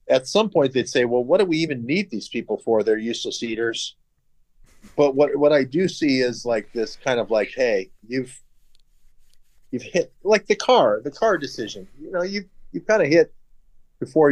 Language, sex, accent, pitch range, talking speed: English, male, American, 110-140 Hz, 195 wpm